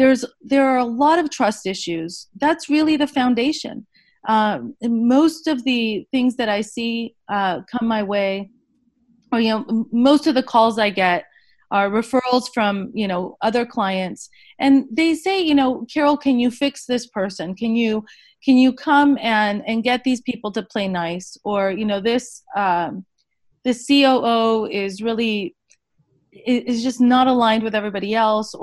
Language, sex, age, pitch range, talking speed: English, female, 30-49, 205-270 Hz, 170 wpm